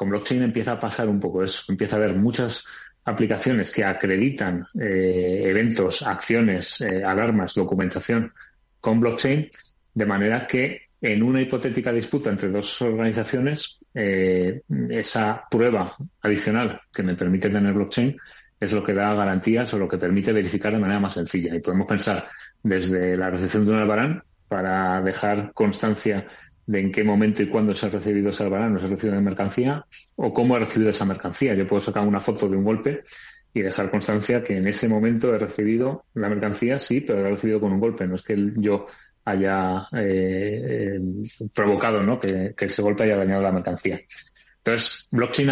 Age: 30-49